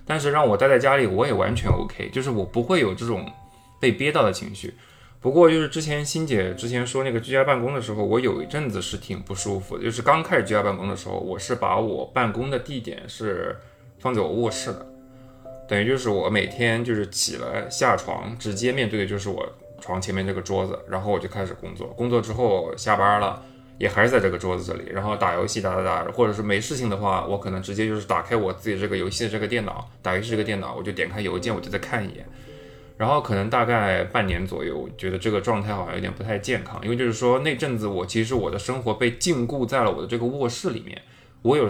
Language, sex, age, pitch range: Chinese, male, 20-39, 100-125 Hz